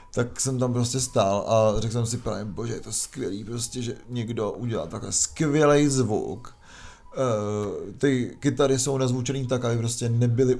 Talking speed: 165 wpm